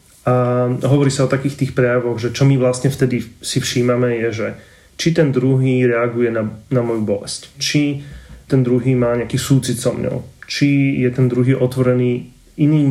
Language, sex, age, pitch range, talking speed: Slovak, male, 30-49, 120-135 Hz, 175 wpm